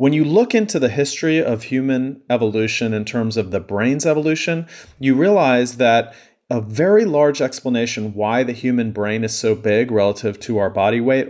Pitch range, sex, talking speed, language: 110-140 Hz, male, 180 wpm, English